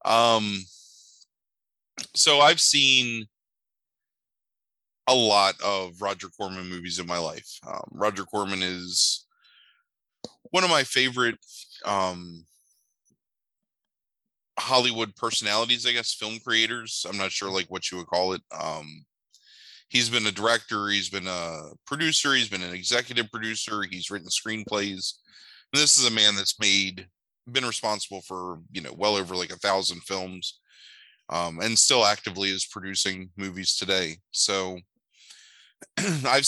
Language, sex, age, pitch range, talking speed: English, male, 20-39, 95-110 Hz, 135 wpm